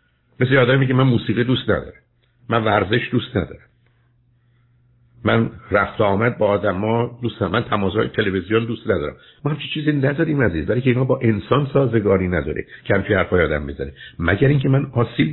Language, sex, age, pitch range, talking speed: Persian, male, 60-79, 105-135 Hz, 170 wpm